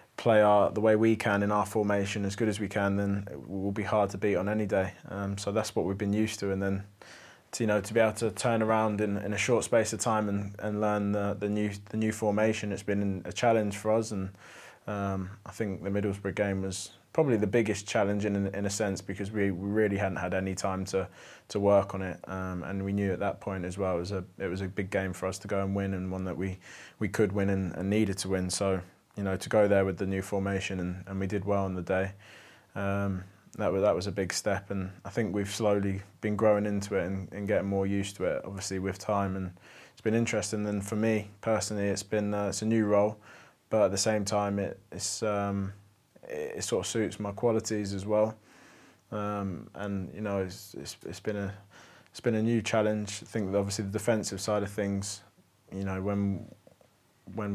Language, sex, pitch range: English, male, 95-105 Hz